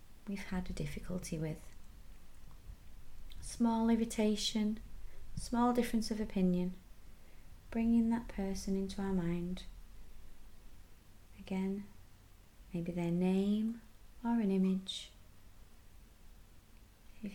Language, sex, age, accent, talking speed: English, female, 20-39, British, 85 wpm